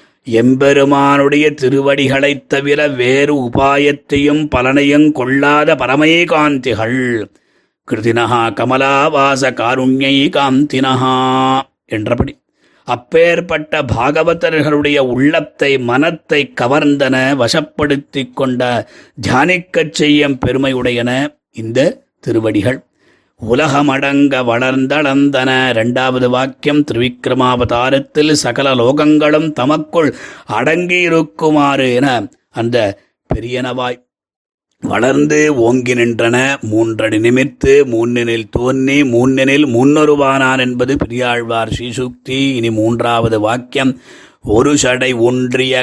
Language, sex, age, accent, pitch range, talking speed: Tamil, male, 30-49, native, 125-145 Hz, 75 wpm